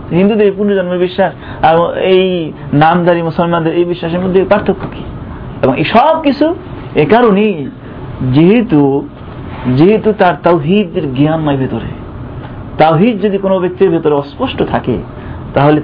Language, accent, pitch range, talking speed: Bengali, native, 130-195 Hz, 90 wpm